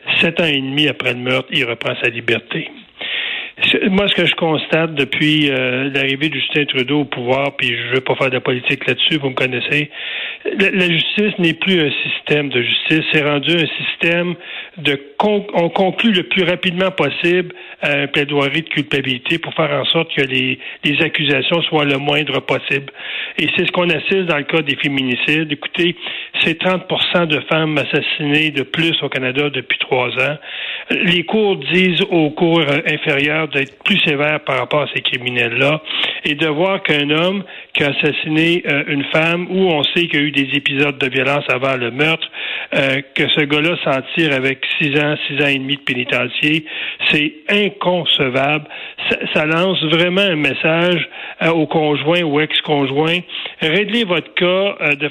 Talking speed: 180 wpm